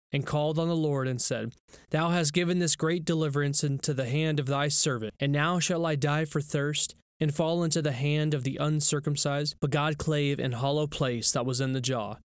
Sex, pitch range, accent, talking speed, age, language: male, 125-155 Hz, American, 220 wpm, 20-39, English